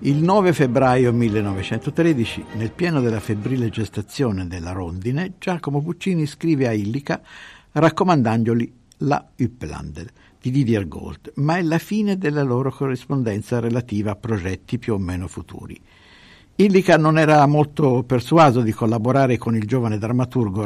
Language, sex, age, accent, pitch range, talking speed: Italian, male, 60-79, native, 105-150 Hz, 135 wpm